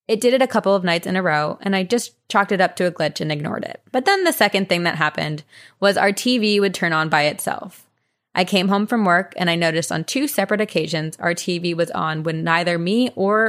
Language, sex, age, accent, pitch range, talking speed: English, female, 20-39, American, 160-205 Hz, 255 wpm